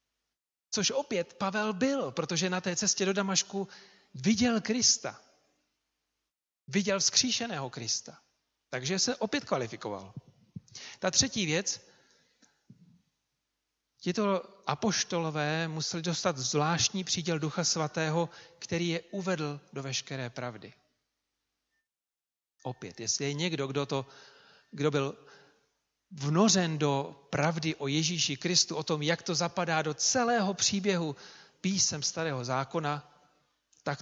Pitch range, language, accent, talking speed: 140-180 Hz, Czech, native, 110 wpm